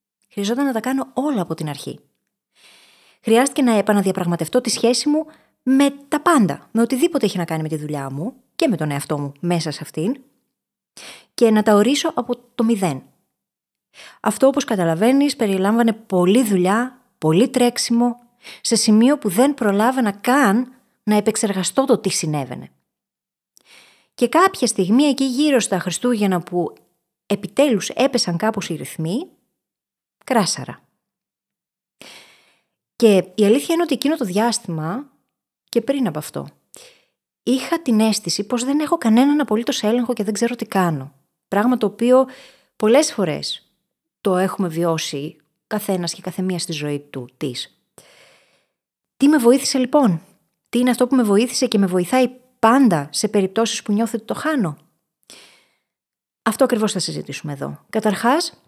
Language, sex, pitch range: Greek, female, 185-255 Hz